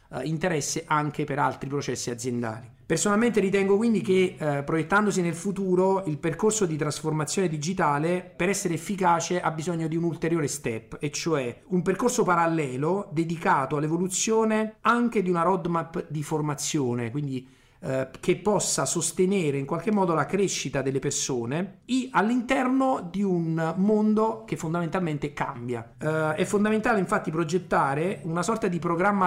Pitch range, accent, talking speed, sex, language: 145-190 Hz, native, 135 wpm, male, Italian